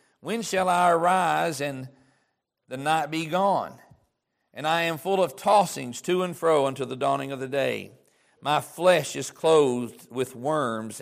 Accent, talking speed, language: American, 165 wpm, English